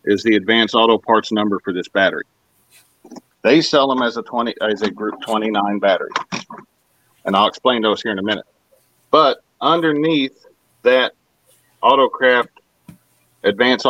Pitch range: 105-130 Hz